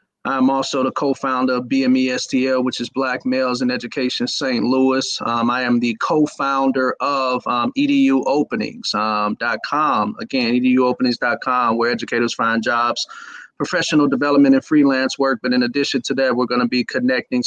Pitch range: 125-150 Hz